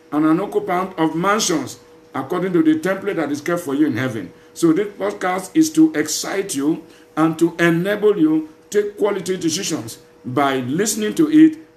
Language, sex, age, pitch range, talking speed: English, male, 50-69, 150-180 Hz, 180 wpm